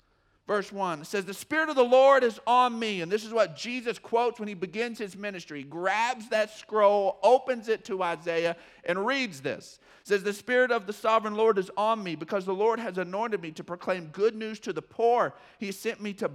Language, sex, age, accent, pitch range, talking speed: English, male, 50-69, American, 195-270 Hz, 225 wpm